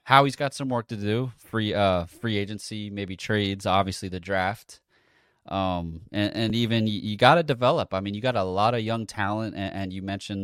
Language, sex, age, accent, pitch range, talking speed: English, male, 20-39, American, 95-115 Hz, 215 wpm